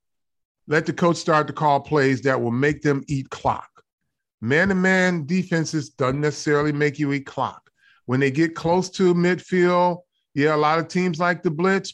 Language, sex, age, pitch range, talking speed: English, male, 30-49, 140-175 Hz, 185 wpm